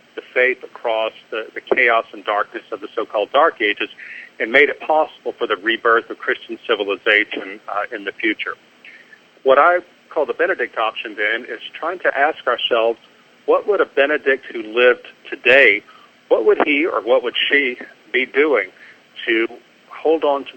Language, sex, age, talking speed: English, male, 50-69, 170 wpm